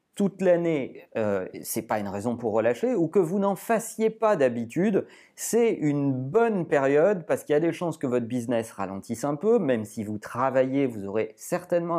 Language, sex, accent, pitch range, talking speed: French, male, French, 130-200 Hz, 195 wpm